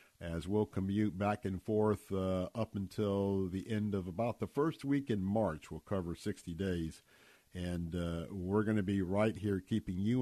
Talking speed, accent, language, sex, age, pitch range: 190 wpm, American, English, male, 50-69, 95-130 Hz